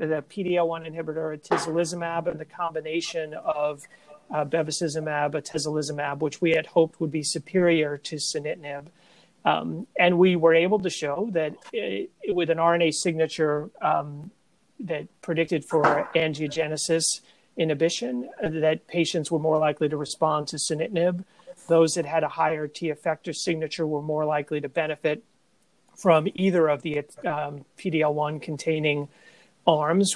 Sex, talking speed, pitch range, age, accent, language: male, 135 wpm, 155-175 Hz, 40-59, American, English